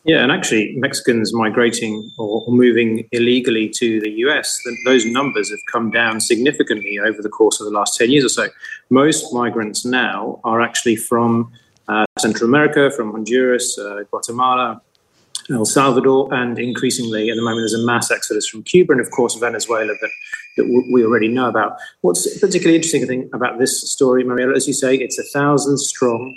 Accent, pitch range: British, 115-140 Hz